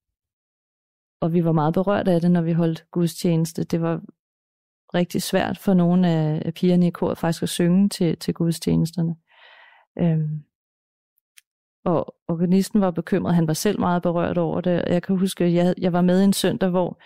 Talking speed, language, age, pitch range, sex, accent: 170 wpm, Danish, 30-49, 160-180 Hz, female, native